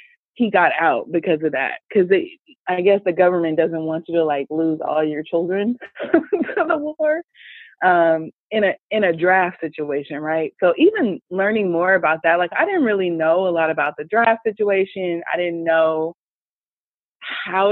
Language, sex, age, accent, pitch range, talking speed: English, female, 20-39, American, 160-210 Hz, 175 wpm